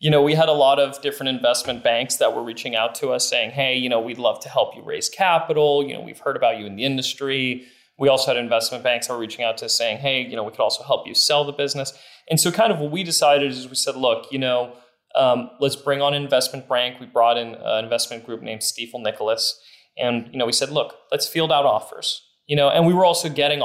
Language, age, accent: English, 30-49, American